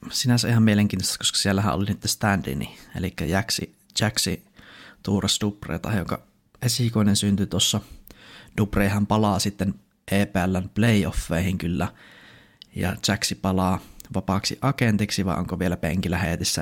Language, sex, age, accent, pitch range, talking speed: Finnish, male, 20-39, native, 95-105 Hz, 115 wpm